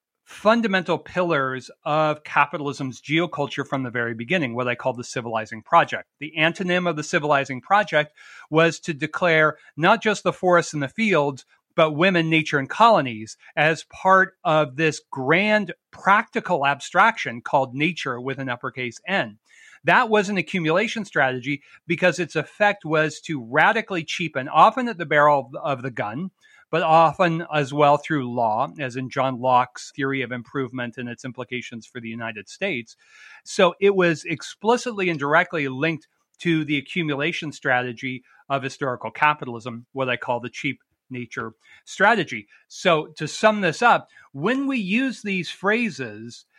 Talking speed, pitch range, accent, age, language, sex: 155 wpm, 135-185 Hz, American, 40-59, English, male